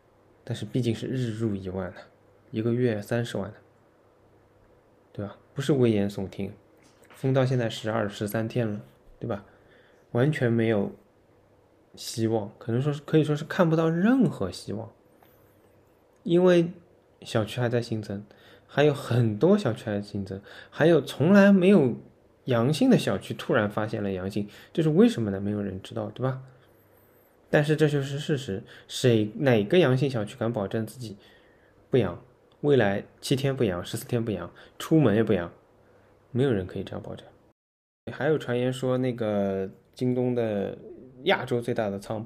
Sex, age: male, 20-39